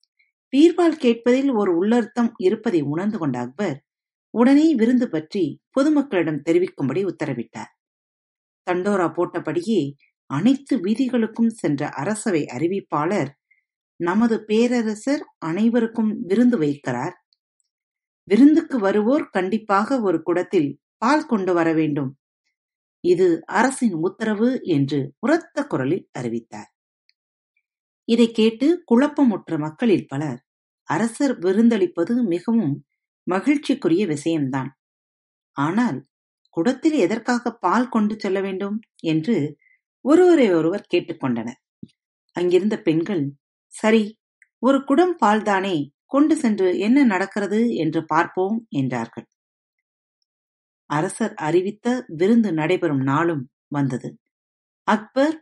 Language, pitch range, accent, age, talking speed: Tamil, 160-250 Hz, native, 50-69, 90 wpm